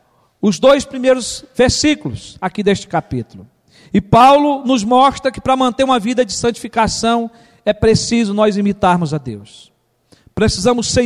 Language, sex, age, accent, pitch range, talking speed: Portuguese, male, 50-69, Brazilian, 205-260 Hz, 140 wpm